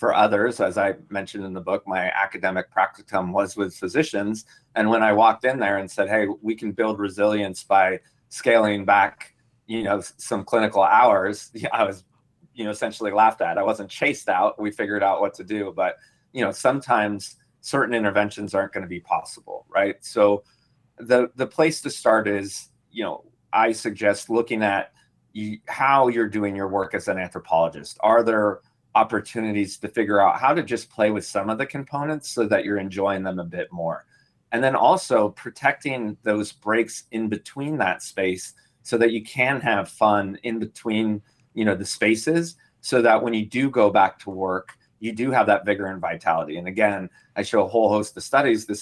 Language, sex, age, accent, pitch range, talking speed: English, male, 30-49, American, 100-120 Hz, 195 wpm